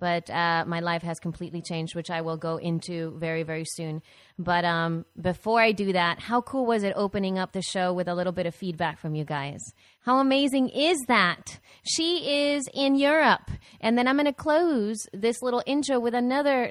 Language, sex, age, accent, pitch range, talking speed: English, female, 30-49, American, 170-250 Hz, 205 wpm